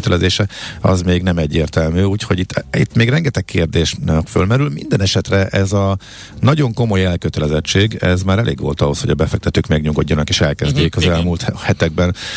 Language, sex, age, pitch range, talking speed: Hungarian, male, 50-69, 85-115 Hz, 160 wpm